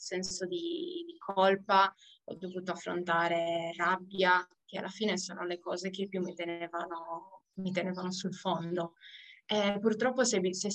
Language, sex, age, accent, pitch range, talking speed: Italian, female, 20-39, native, 185-215 Hz, 140 wpm